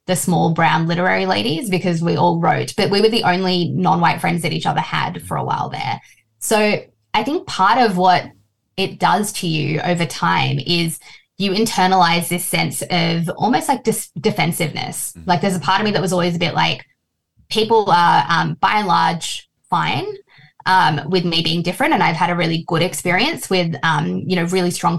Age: 20-39